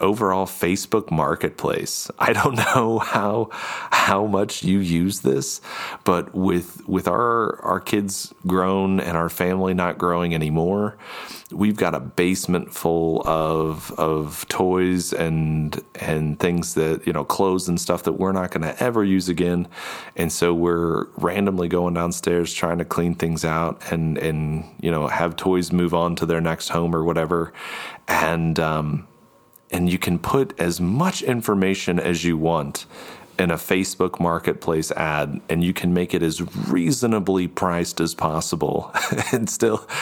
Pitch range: 80-95 Hz